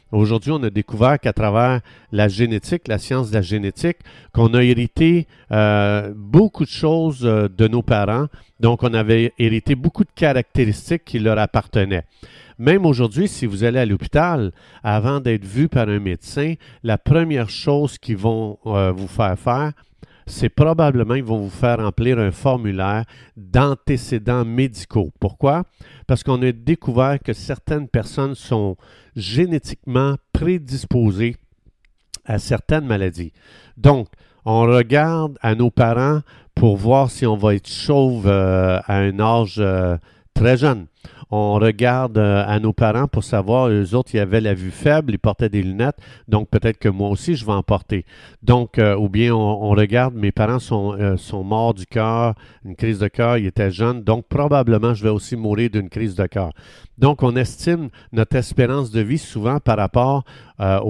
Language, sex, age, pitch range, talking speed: French, male, 50-69, 105-135 Hz, 170 wpm